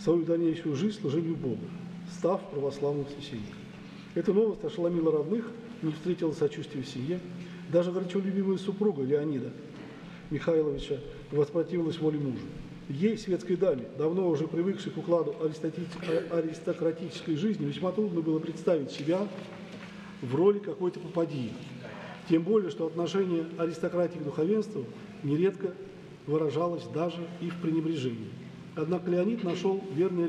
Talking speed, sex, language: 120 wpm, male, Russian